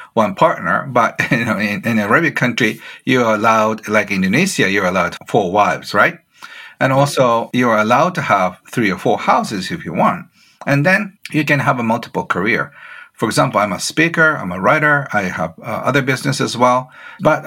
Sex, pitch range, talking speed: male, 110-140 Hz, 190 wpm